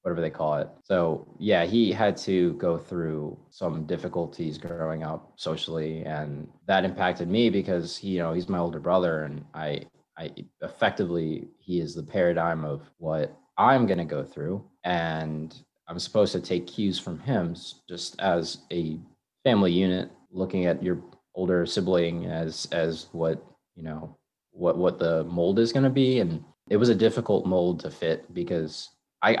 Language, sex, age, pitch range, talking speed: English, male, 20-39, 85-100 Hz, 170 wpm